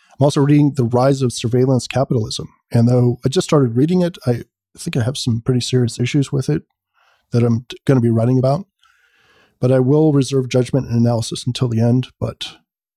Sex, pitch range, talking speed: male, 120-140 Hz, 205 wpm